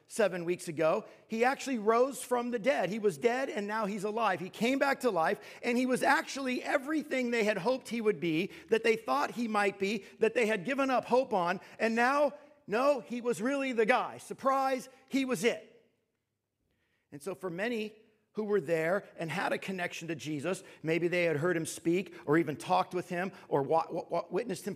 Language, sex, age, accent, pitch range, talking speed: English, male, 50-69, American, 170-230 Hz, 210 wpm